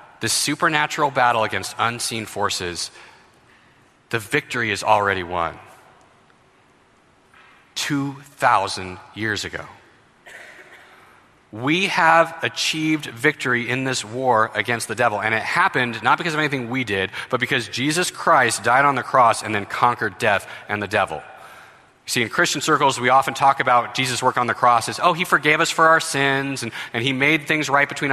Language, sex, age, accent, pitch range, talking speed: English, male, 30-49, American, 115-160 Hz, 160 wpm